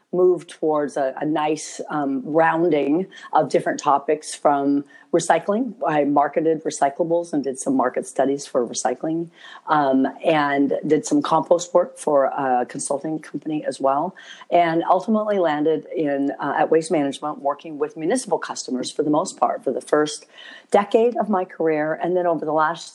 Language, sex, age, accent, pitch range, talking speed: English, female, 40-59, American, 140-170 Hz, 160 wpm